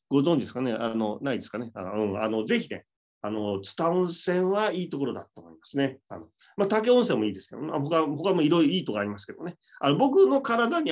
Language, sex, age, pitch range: Japanese, male, 30-49, 110-185 Hz